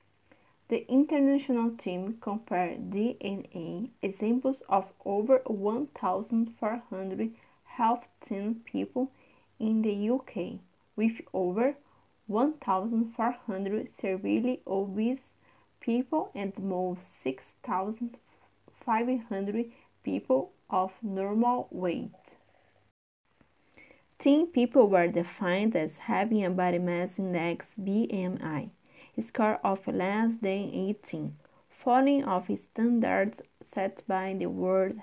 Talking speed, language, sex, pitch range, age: 85 wpm, English, female, 190-240 Hz, 30-49